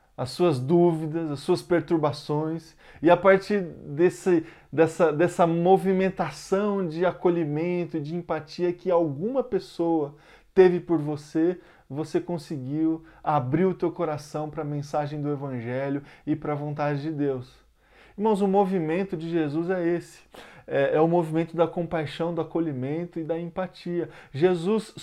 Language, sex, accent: Portuguese, male, Brazilian